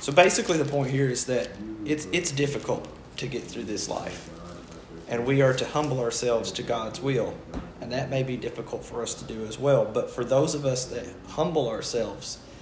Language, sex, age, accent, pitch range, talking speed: English, male, 30-49, American, 95-130 Hz, 205 wpm